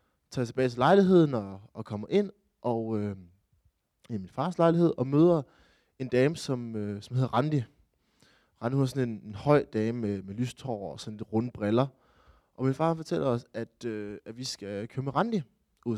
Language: Danish